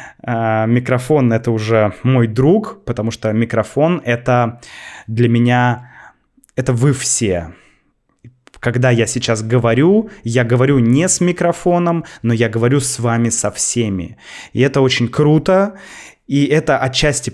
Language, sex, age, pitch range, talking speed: Russian, male, 20-39, 110-140 Hz, 130 wpm